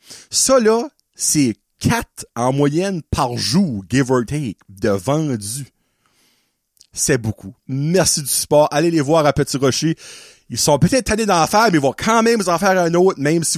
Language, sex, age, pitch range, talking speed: French, male, 30-49, 140-190 Hz, 185 wpm